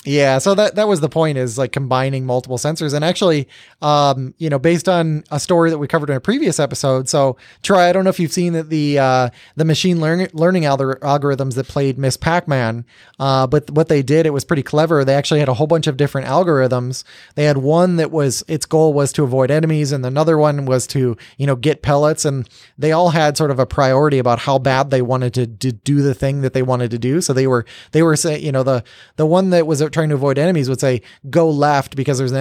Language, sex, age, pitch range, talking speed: English, male, 20-39, 130-155 Hz, 250 wpm